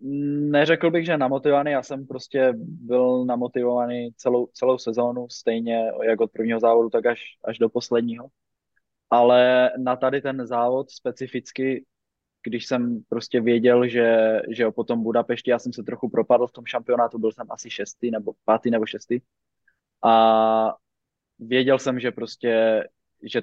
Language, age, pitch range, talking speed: Czech, 20-39, 110-125 Hz, 150 wpm